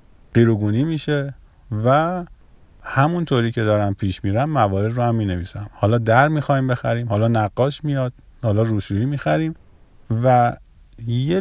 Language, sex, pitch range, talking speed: Persian, male, 100-135 Hz, 140 wpm